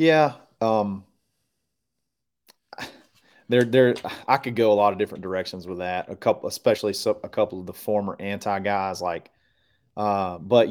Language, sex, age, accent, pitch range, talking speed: English, male, 30-49, American, 95-110 Hz, 155 wpm